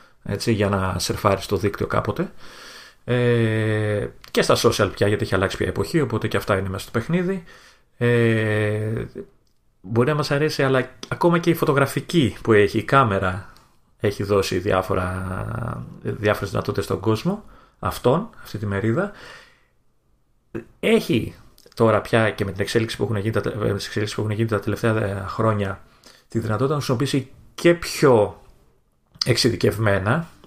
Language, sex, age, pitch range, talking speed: Greek, male, 30-49, 105-140 Hz, 145 wpm